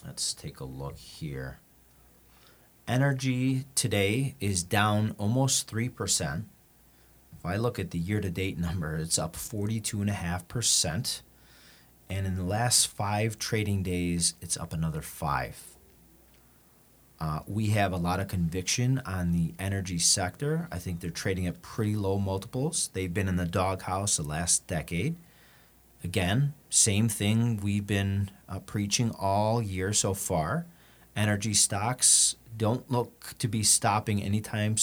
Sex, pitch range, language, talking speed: male, 85-115 Hz, English, 140 wpm